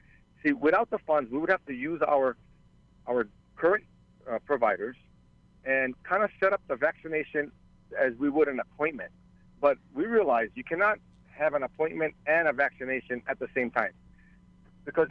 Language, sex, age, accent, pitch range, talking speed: English, male, 50-69, American, 125-175 Hz, 165 wpm